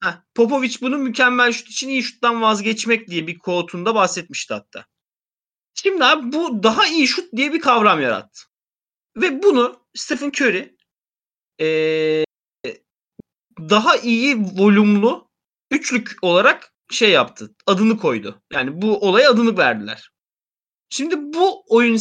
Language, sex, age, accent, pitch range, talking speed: Turkish, male, 30-49, native, 175-260 Hz, 125 wpm